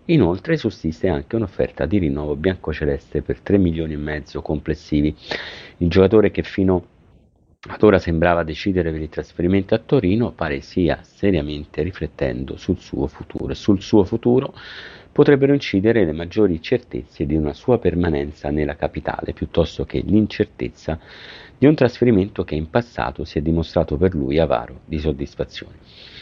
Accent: native